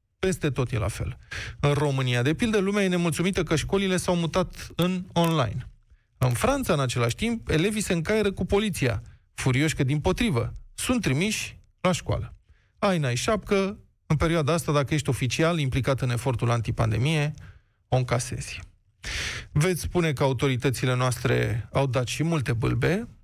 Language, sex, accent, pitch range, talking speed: Romanian, male, native, 120-170 Hz, 155 wpm